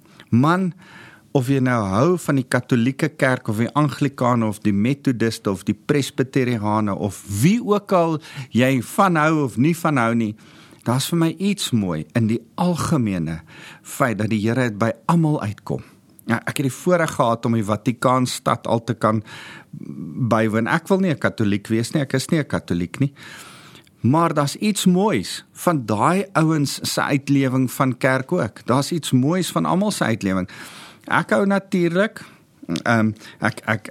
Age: 50-69